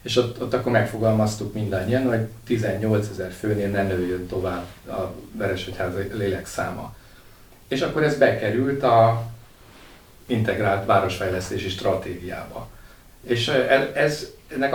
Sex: male